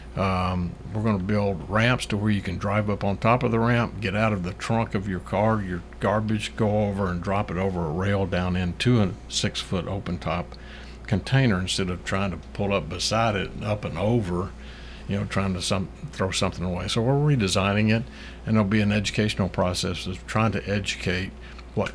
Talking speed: 215 wpm